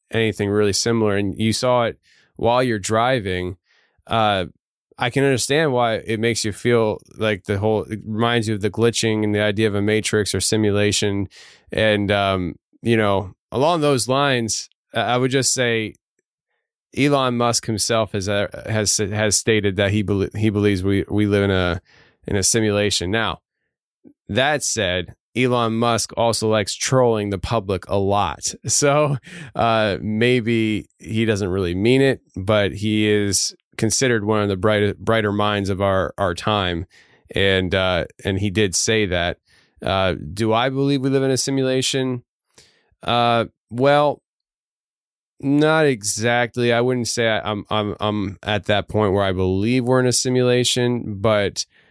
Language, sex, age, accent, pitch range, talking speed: English, male, 20-39, American, 100-120 Hz, 160 wpm